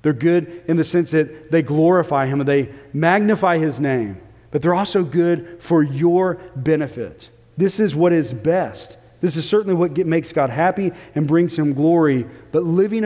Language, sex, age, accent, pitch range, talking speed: English, male, 40-59, American, 125-155 Hz, 185 wpm